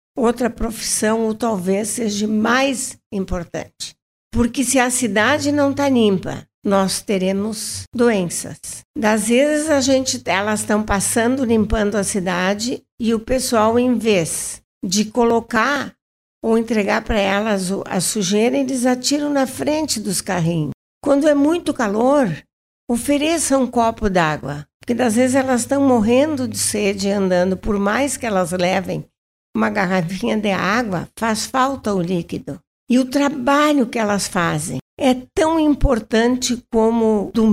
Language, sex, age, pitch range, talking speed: Portuguese, female, 60-79, 200-255 Hz, 140 wpm